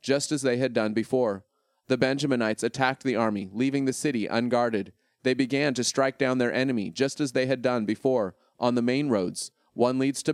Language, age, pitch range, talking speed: English, 30-49, 110-135 Hz, 205 wpm